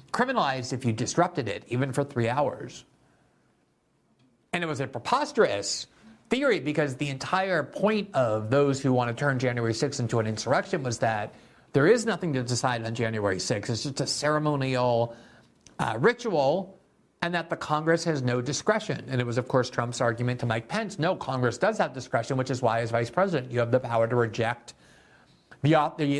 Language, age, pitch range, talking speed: English, 50-69, 120-150 Hz, 185 wpm